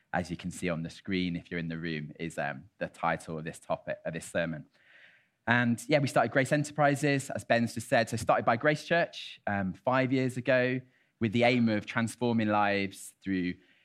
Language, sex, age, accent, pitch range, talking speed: English, male, 20-39, British, 95-135 Hz, 210 wpm